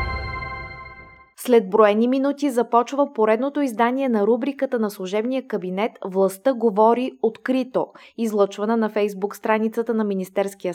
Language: Bulgarian